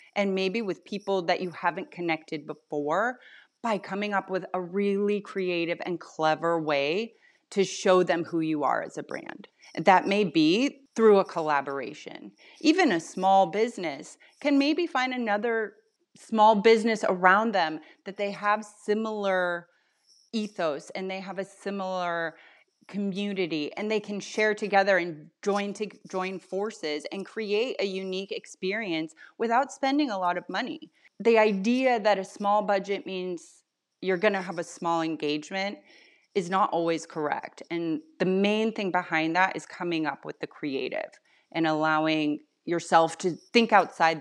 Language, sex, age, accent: English, female, 30-49, American